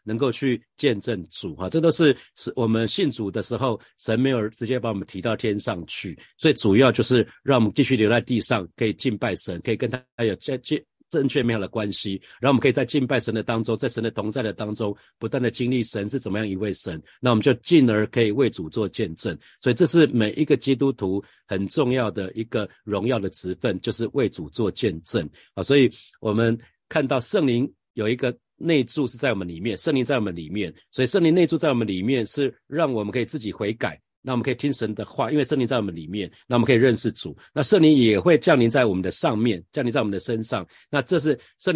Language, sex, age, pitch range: Chinese, male, 50-69, 105-130 Hz